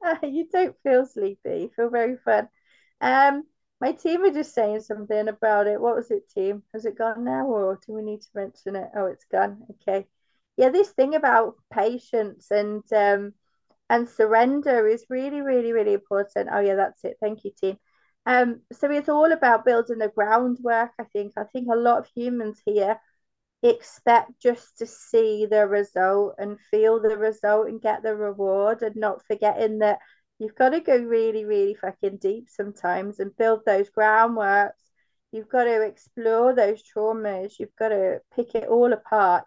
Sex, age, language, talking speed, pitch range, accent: female, 30-49, English, 180 wpm, 210-250 Hz, British